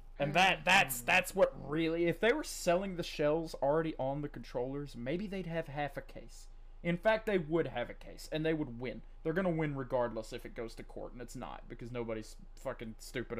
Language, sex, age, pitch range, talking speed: English, male, 20-39, 120-170 Hz, 220 wpm